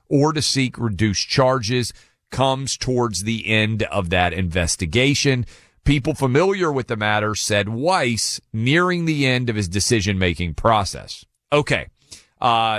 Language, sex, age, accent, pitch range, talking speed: English, male, 40-59, American, 100-130 Hz, 130 wpm